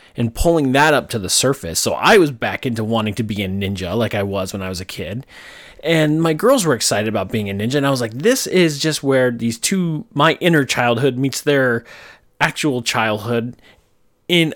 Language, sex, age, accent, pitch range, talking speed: English, male, 30-49, American, 110-155 Hz, 215 wpm